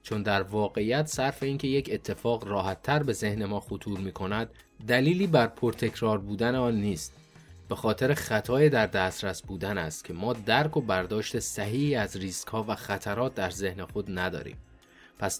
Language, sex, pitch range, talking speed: Persian, male, 95-120 Hz, 160 wpm